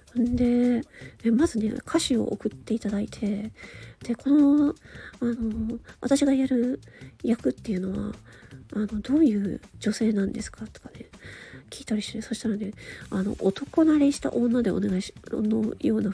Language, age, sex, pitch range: Japanese, 40-59, female, 210-275 Hz